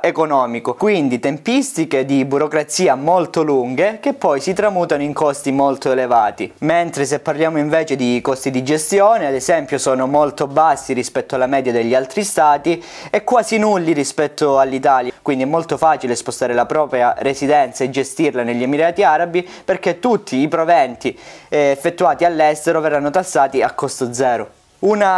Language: Italian